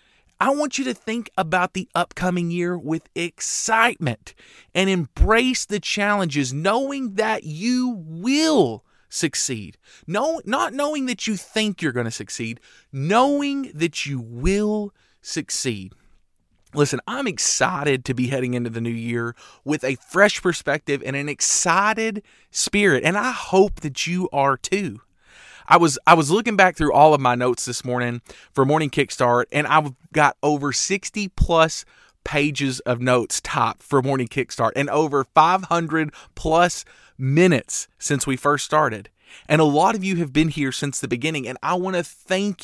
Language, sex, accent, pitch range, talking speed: English, male, American, 130-195 Hz, 160 wpm